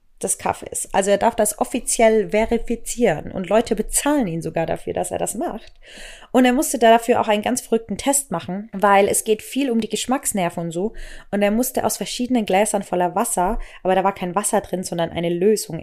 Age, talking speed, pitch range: 20-39, 210 wpm, 190-235 Hz